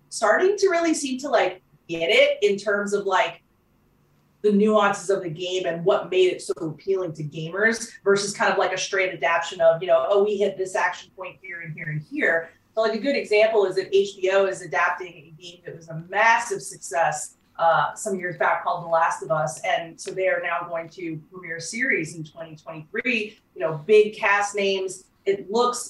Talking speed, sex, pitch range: 215 wpm, female, 165-210 Hz